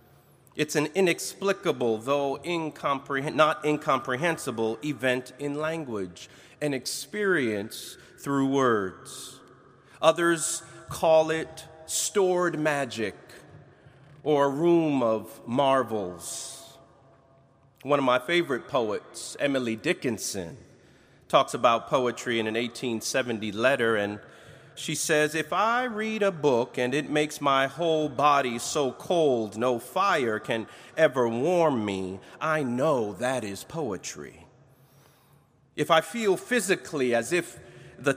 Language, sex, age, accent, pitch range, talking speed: English, male, 30-49, American, 125-155 Hz, 110 wpm